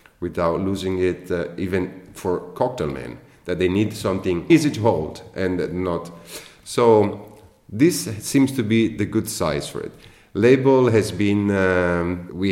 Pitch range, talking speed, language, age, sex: 85-105 Hz, 155 wpm, English, 30-49, male